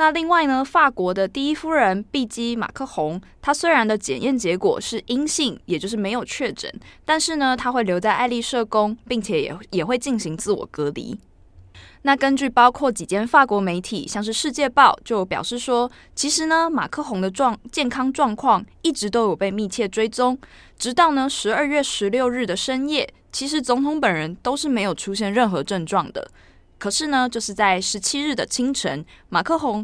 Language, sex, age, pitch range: Chinese, female, 20-39, 200-275 Hz